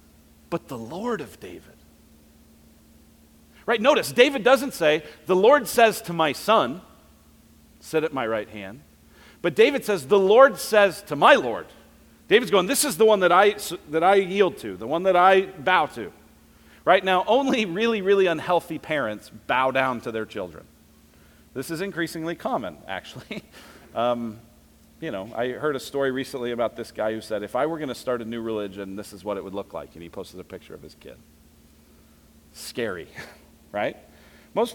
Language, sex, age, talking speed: English, male, 40-59, 180 wpm